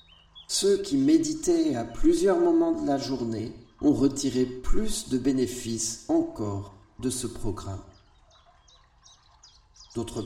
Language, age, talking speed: French, 50-69, 110 wpm